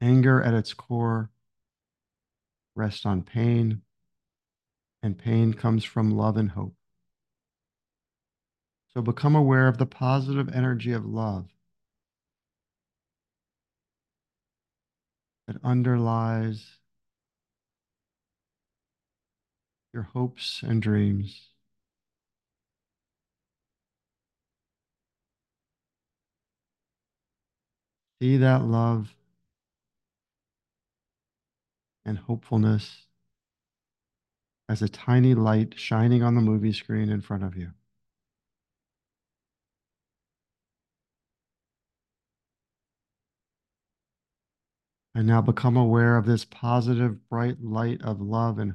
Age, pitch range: 50-69, 100-120 Hz